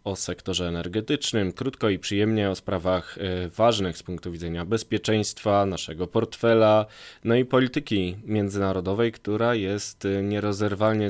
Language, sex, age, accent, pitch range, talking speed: Polish, male, 20-39, native, 90-120 Hz, 120 wpm